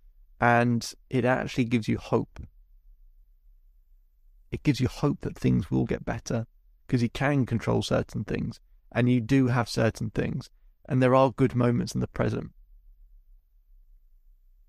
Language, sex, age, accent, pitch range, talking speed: English, male, 30-49, British, 70-115 Hz, 145 wpm